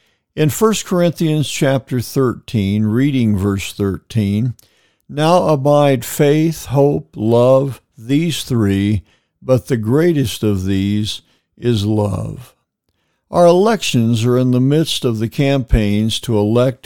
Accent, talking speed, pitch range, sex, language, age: American, 115 wpm, 105-140 Hz, male, English, 60-79